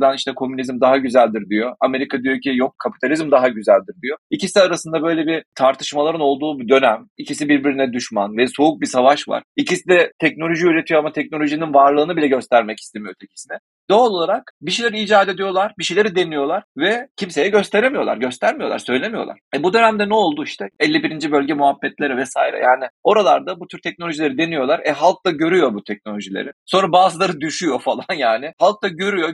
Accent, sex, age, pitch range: native, male, 40-59, 140-190 Hz